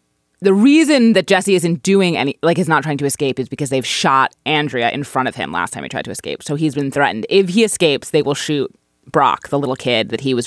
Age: 20-39